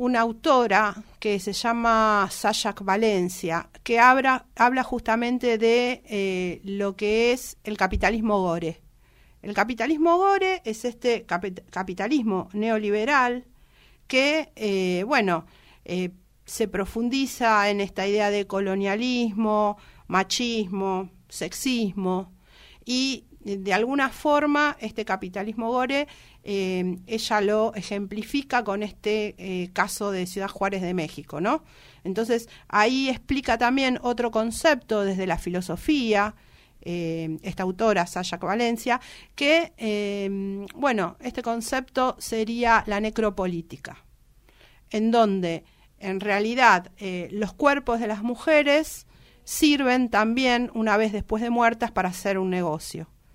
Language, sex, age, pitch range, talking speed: Spanish, female, 50-69, 190-240 Hz, 115 wpm